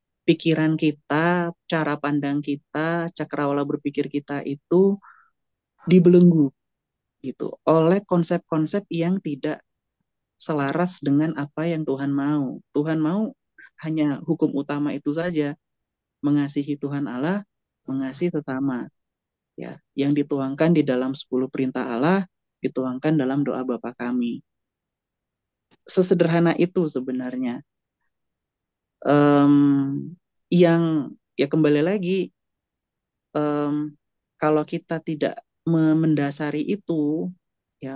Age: 30-49